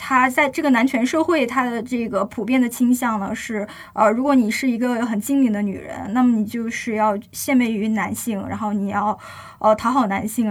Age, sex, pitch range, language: 20-39, female, 215-260 Hz, Chinese